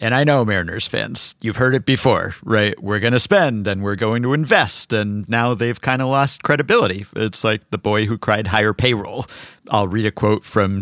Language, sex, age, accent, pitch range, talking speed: English, male, 50-69, American, 100-135 Hz, 215 wpm